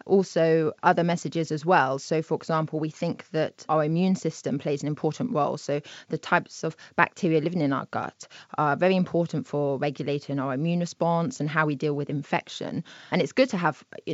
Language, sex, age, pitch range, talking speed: English, female, 20-39, 155-190 Hz, 200 wpm